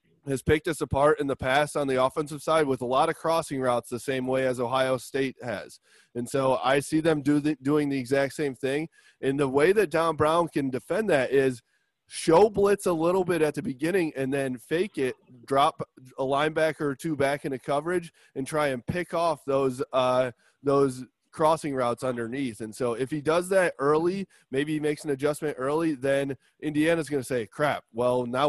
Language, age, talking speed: English, 20-39, 195 wpm